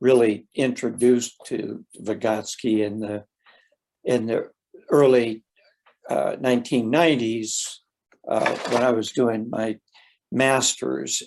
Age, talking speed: 60-79, 95 wpm